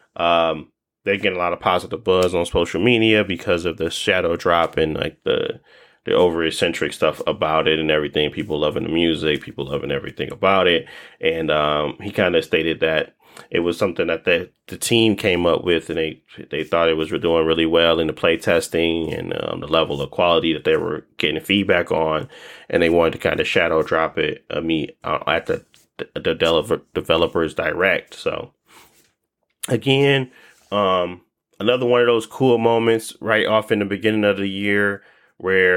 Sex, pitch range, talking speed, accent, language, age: male, 80-120 Hz, 190 wpm, American, English, 20-39